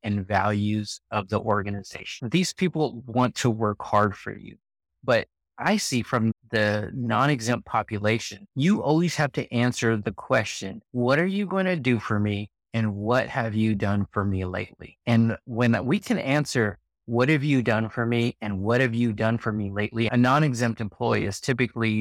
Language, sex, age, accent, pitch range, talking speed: English, male, 30-49, American, 105-125 Hz, 185 wpm